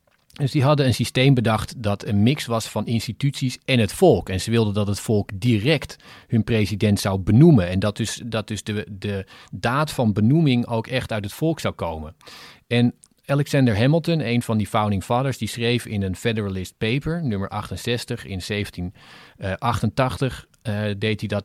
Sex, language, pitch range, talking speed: male, Dutch, 105-135 Hz, 180 wpm